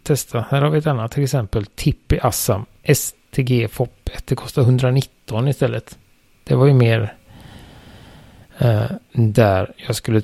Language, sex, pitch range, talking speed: Swedish, male, 105-130 Hz, 135 wpm